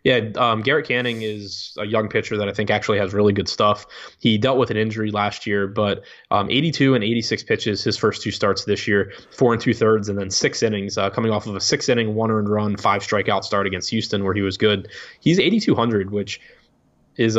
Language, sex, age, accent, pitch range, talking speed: English, male, 20-39, American, 100-110 Hz, 230 wpm